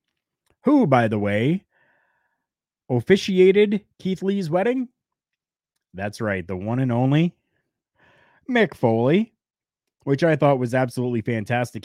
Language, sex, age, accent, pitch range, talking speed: English, male, 30-49, American, 105-150 Hz, 110 wpm